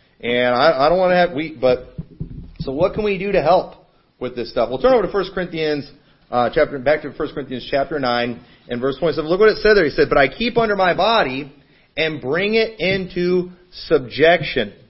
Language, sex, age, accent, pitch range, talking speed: English, male, 40-59, American, 140-190 Hz, 220 wpm